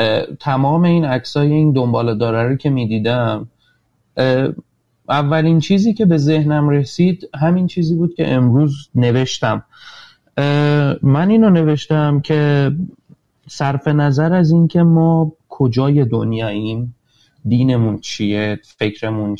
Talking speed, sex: 105 wpm, male